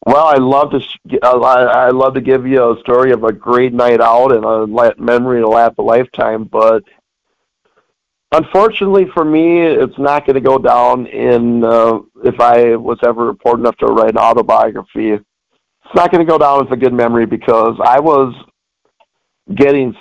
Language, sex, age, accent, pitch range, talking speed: English, male, 50-69, American, 115-140 Hz, 180 wpm